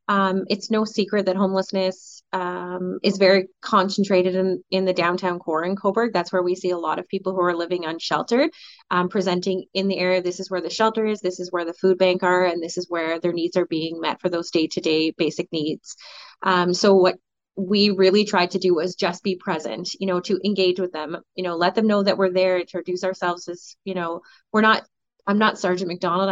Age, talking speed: 20-39, 225 wpm